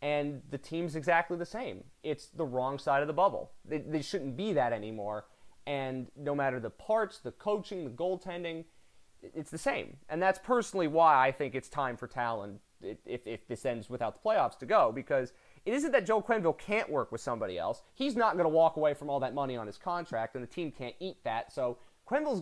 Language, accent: English, American